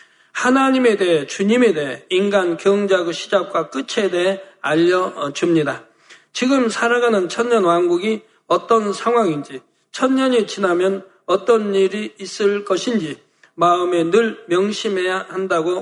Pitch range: 175-225 Hz